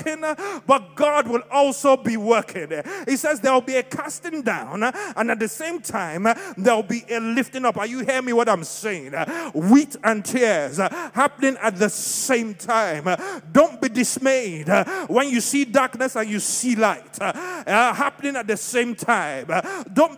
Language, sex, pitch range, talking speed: English, male, 225-280 Hz, 170 wpm